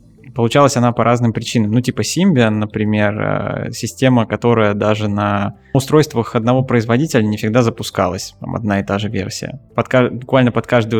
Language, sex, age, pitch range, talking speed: Russian, male, 20-39, 105-120 Hz, 155 wpm